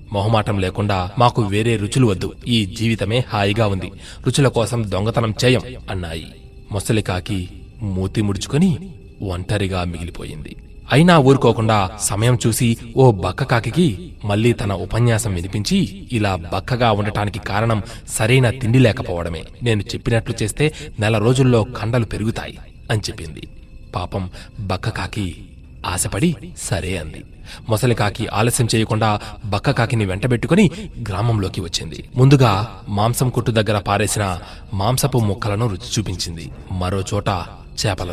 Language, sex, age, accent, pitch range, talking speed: Telugu, male, 30-49, native, 95-120 Hz, 110 wpm